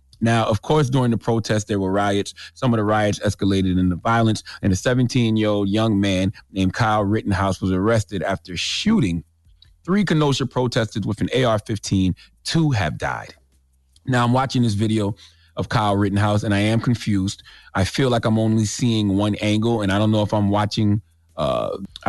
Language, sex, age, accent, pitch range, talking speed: English, male, 30-49, American, 100-130 Hz, 175 wpm